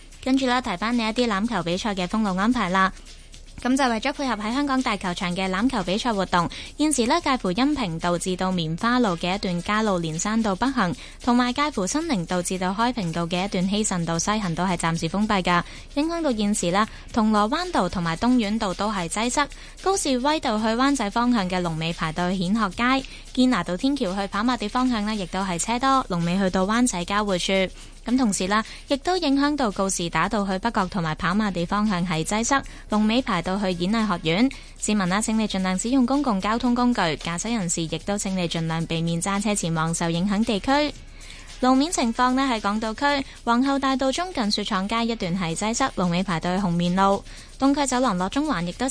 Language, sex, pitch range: Chinese, female, 180-250 Hz